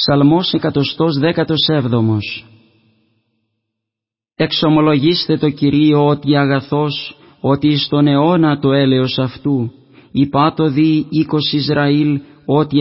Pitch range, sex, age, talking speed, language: 140-155 Hz, male, 30-49, 85 wpm, Greek